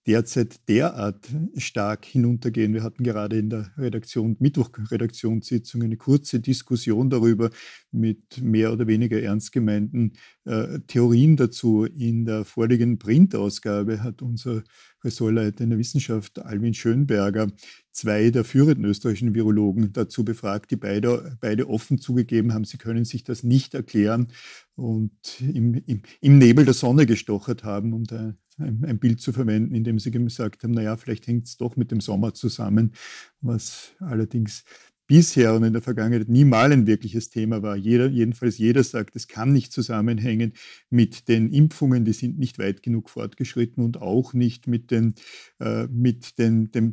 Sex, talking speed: male, 150 wpm